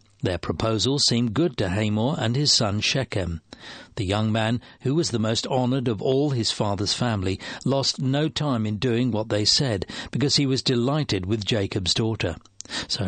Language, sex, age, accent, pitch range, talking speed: English, male, 60-79, British, 105-135 Hz, 180 wpm